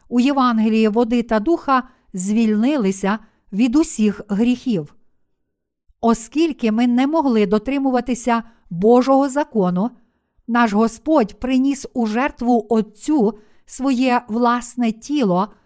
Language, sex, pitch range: Ukrainian, female, 210-250 Hz